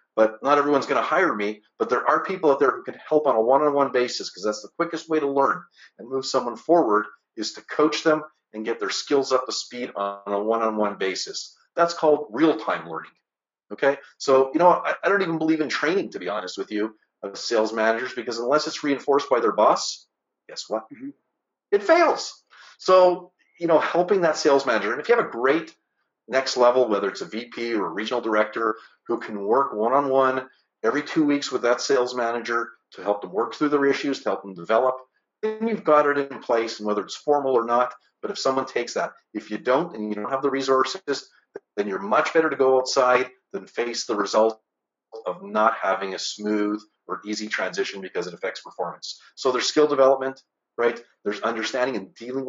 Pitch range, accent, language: 110-145 Hz, American, English